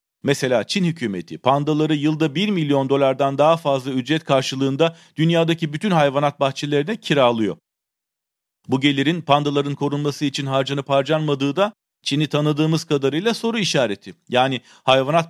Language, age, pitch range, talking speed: Turkish, 40-59, 135-165 Hz, 125 wpm